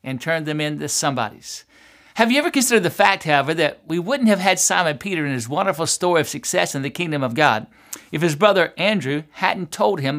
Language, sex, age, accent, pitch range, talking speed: English, male, 60-79, American, 145-195 Hz, 220 wpm